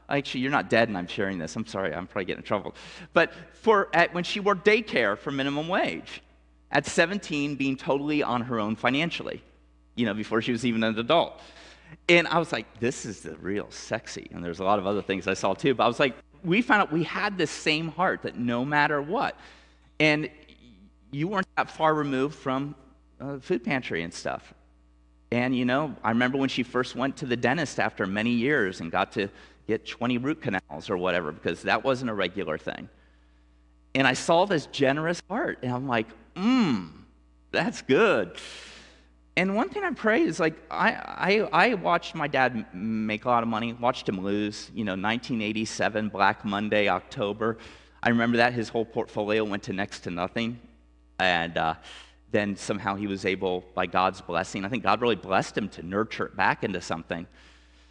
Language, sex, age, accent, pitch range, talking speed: English, male, 30-49, American, 95-145 Hz, 195 wpm